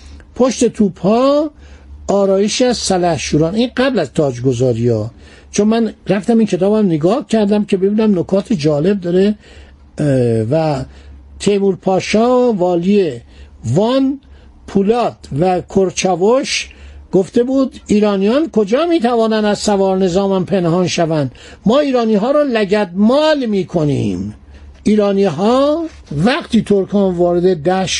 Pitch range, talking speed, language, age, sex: 170-230 Hz, 110 wpm, Persian, 60-79, male